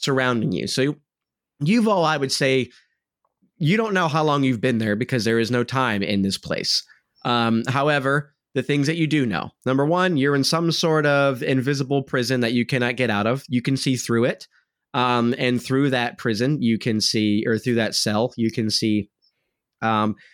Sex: male